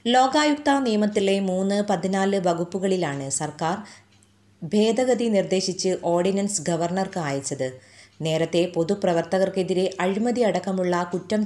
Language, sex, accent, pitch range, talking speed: Malayalam, female, native, 160-205 Hz, 80 wpm